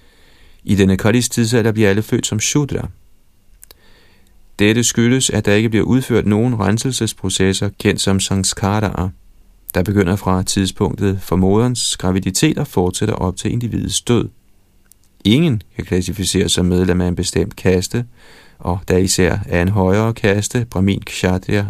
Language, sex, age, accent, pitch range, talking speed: Danish, male, 40-59, native, 95-115 Hz, 145 wpm